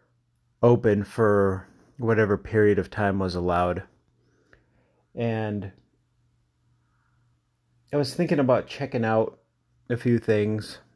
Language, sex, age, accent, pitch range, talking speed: English, male, 30-49, American, 100-120 Hz, 100 wpm